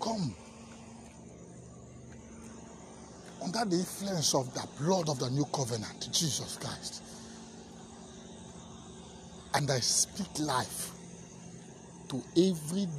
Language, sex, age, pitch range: English, male, 50-69, 135-190 Hz